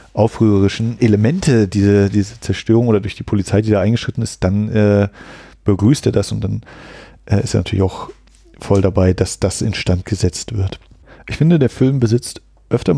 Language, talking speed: German, 175 wpm